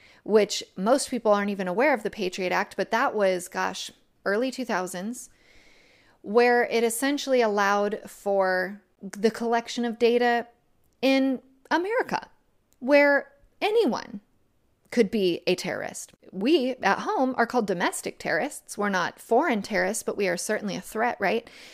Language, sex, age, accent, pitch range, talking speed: English, female, 30-49, American, 195-250 Hz, 140 wpm